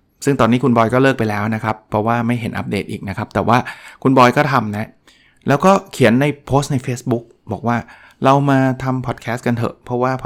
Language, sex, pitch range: Thai, male, 115-135 Hz